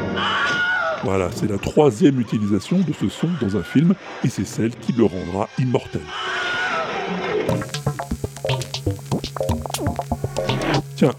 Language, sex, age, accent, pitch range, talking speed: French, female, 60-79, French, 110-155 Hz, 100 wpm